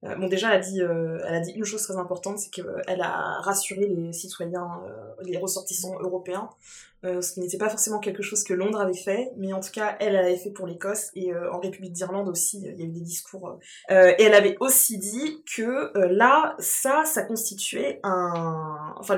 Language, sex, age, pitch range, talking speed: French, female, 20-39, 180-230 Hz, 230 wpm